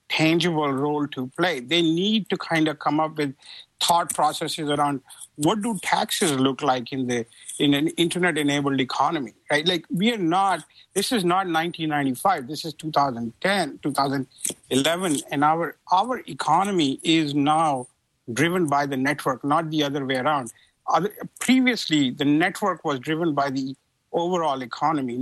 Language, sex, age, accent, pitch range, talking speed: English, male, 50-69, Indian, 135-170 Hz, 150 wpm